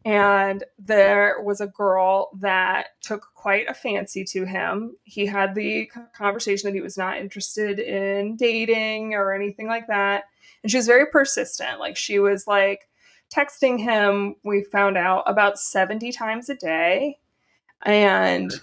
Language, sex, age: English, female, 20-39